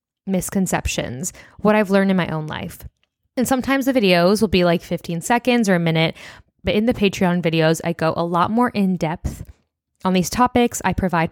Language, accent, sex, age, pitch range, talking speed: English, American, female, 10-29, 170-215 Hz, 195 wpm